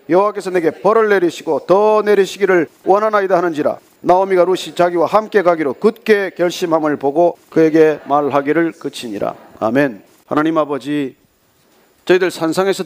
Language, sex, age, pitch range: Korean, male, 40-59, 145-210 Hz